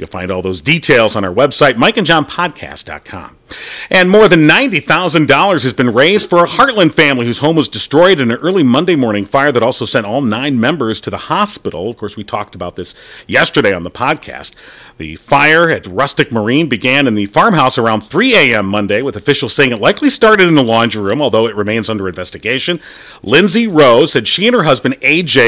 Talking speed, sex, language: 205 wpm, male, English